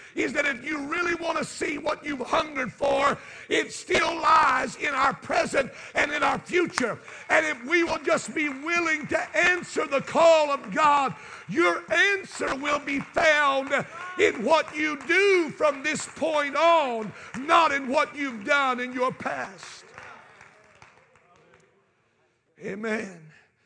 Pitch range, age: 225-295 Hz, 50-69